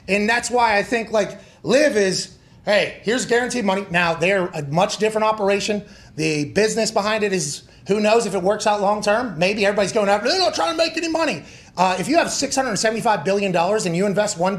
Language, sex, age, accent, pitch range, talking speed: English, male, 30-49, American, 195-245 Hz, 215 wpm